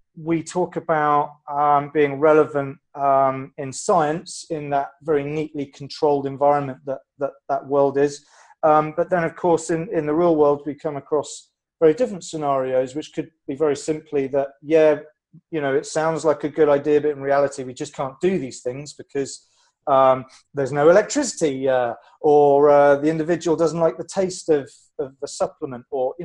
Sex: male